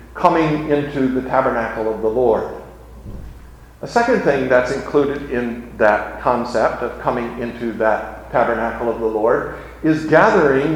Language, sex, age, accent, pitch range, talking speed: English, male, 50-69, American, 120-175 Hz, 140 wpm